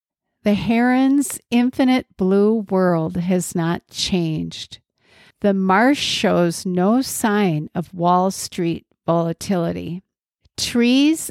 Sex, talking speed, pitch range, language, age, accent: female, 95 wpm, 180-230 Hz, English, 50-69, American